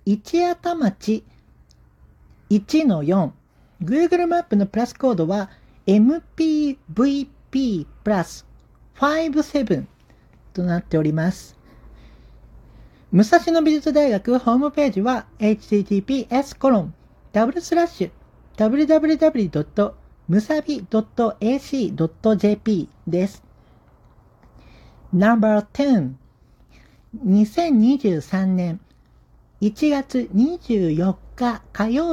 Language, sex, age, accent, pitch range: Japanese, male, 50-69, native, 190-285 Hz